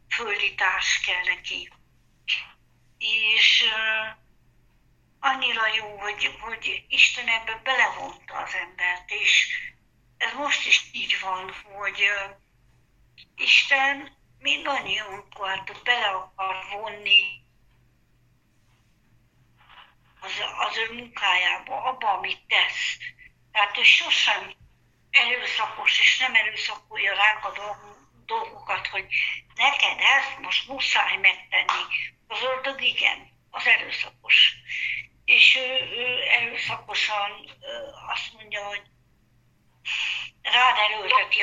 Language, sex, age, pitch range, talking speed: Hungarian, female, 60-79, 190-265 Hz, 85 wpm